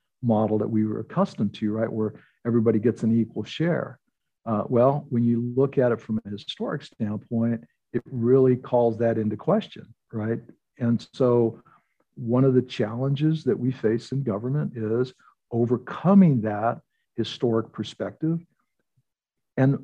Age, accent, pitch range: 60-79, American, 115-135 Hz